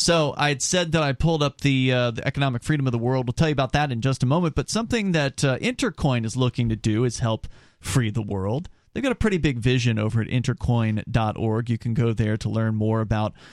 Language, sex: English, male